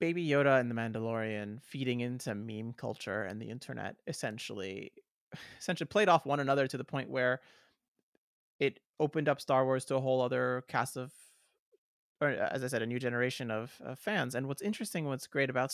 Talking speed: 185 wpm